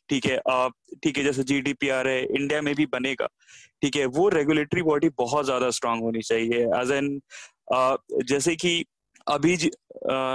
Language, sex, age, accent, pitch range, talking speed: Hindi, male, 20-39, native, 135-165 Hz, 160 wpm